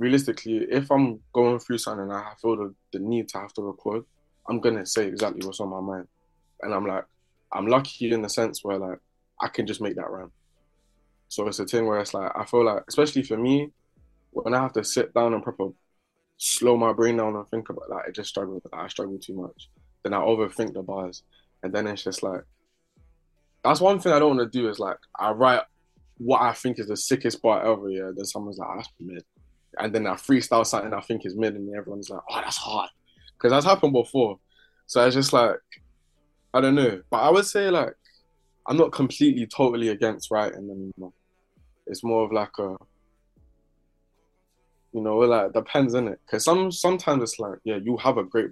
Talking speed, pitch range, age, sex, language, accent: 215 wpm, 95-120 Hz, 20-39, male, English, British